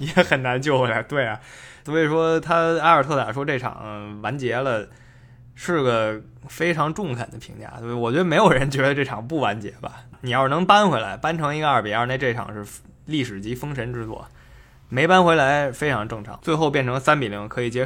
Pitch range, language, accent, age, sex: 110-145 Hz, Chinese, native, 20-39, male